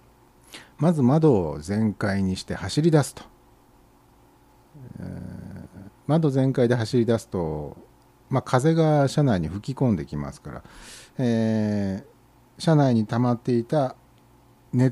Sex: male